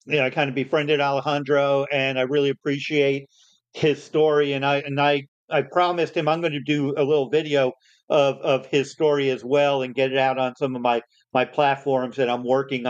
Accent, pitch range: American, 130-150 Hz